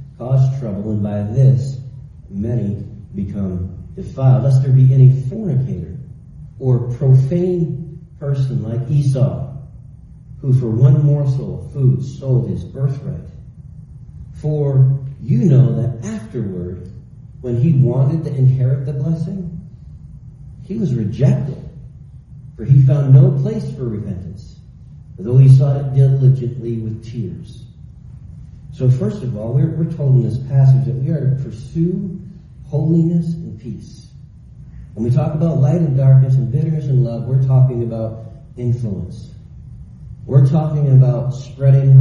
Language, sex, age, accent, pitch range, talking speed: English, male, 40-59, American, 120-135 Hz, 135 wpm